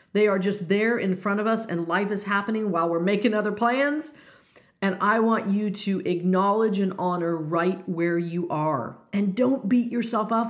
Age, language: 50-69, English